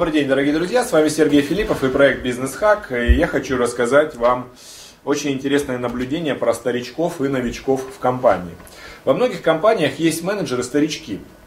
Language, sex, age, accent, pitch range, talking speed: Russian, male, 30-49, native, 125-175 Hz, 155 wpm